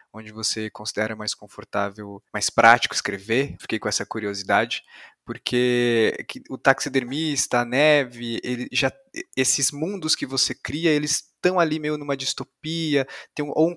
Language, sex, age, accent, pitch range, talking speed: Portuguese, male, 20-39, Brazilian, 120-155 Hz, 150 wpm